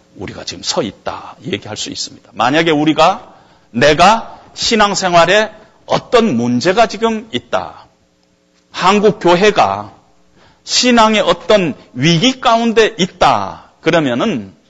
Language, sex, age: Korean, male, 40-59